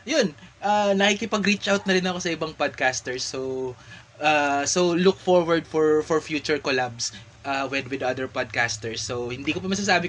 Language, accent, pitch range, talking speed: Filipino, native, 120-155 Hz, 185 wpm